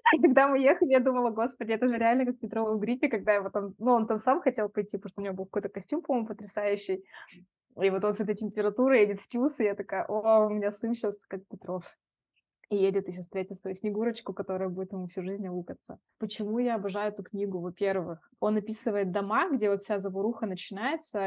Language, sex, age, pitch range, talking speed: Russian, female, 20-39, 185-215 Hz, 215 wpm